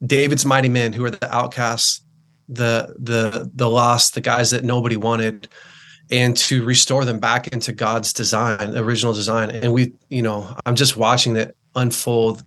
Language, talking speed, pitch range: English, 170 wpm, 110-125 Hz